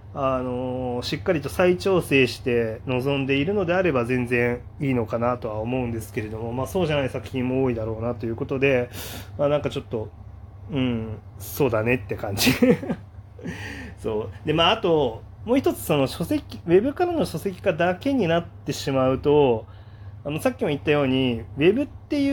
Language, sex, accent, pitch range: Japanese, male, native, 115-175 Hz